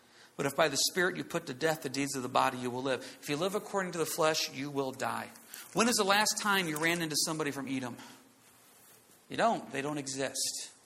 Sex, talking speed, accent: male, 240 wpm, American